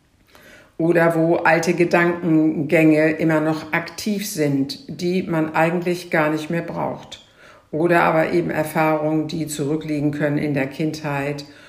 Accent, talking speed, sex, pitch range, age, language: German, 130 wpm, female, 155-190 Hz, 60-79, German